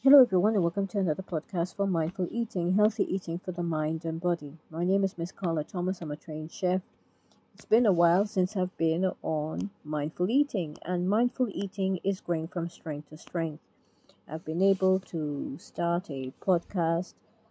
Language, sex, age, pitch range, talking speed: English, female, 30-49, 165-185 Hz, 180 wpm